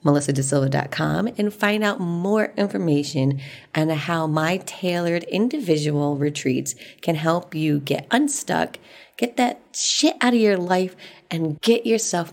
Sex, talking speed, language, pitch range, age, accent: female, 130 wpm, English, 145-190 Hz, 30-49, American